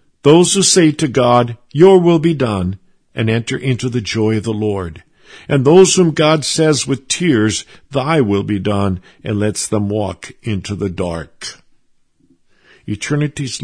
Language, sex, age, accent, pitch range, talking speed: English, male, 60-79, American, 110-140 Hz, 160 wpm